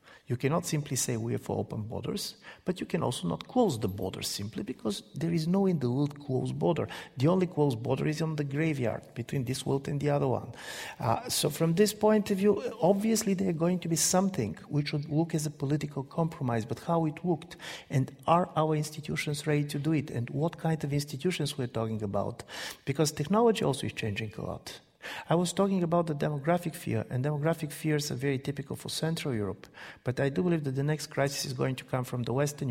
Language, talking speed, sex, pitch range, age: English, 225 wpm, male, 120-165 Hz, 50-69